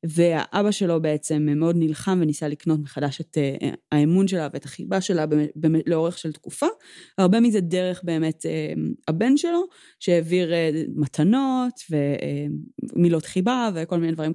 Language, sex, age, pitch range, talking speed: Hebrew, female, 20-39, 150-205 Hz, 150 wpm